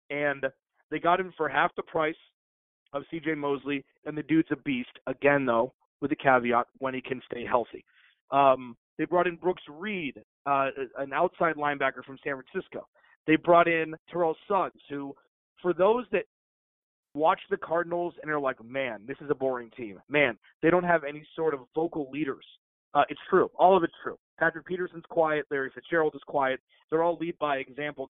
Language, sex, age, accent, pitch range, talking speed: English, male, 30-49, American, 135-170 Hz, 190 wpm